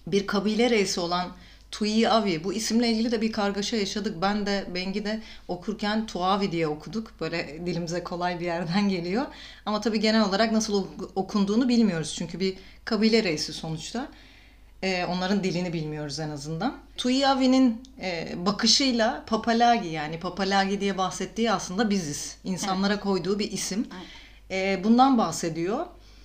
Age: 30-49